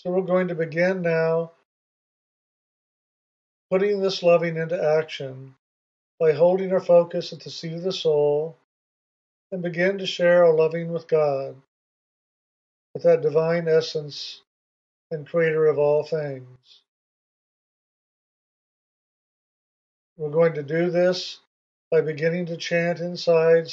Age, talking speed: 50-69, 120 wpm